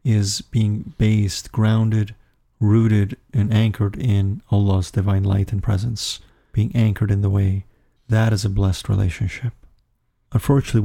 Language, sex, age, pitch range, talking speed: English, male, 40-59, 100-115 Hz, 135 wpm